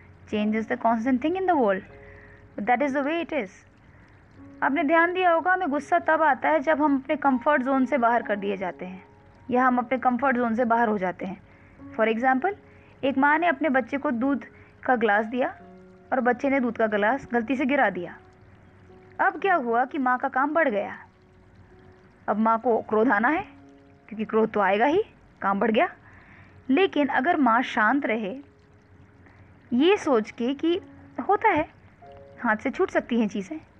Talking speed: 190 wpm